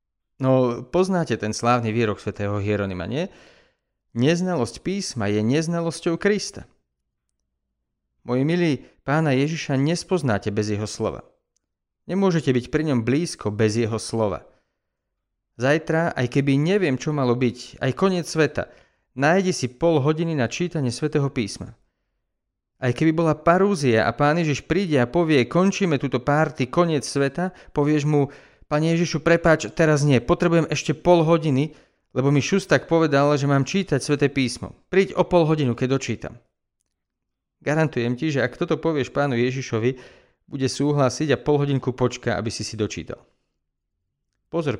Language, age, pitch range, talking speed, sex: Slovak, 40-59, 115-160 Hz, 145 wpm, male